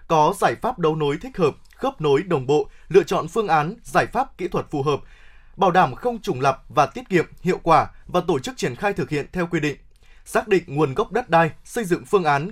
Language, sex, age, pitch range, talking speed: Vietnamese, male, 20-39, 155-205 Hz, 245 wpm